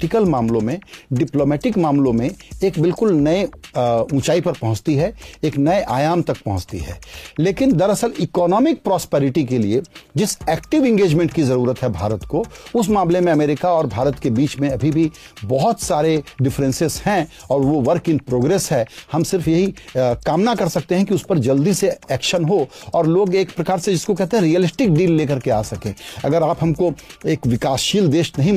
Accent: native